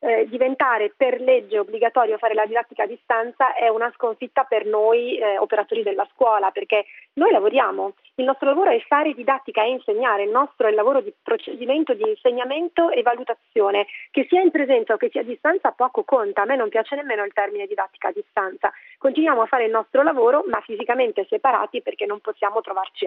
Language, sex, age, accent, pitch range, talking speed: Italian, female, 40-59, native, 220-325 Hz, 195 wpm